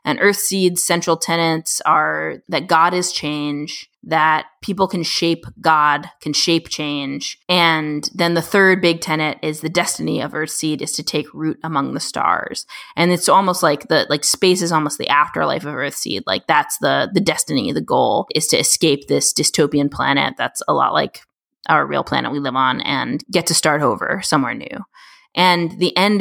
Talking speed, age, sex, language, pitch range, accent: 185 wpm, 20-39, female, English, 155-175 Hz, American